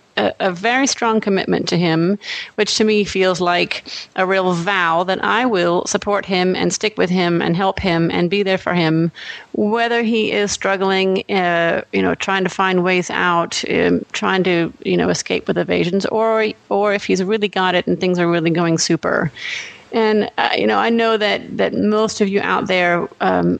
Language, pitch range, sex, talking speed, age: English, 180-215 Hz, female, 200 wpm, 30-49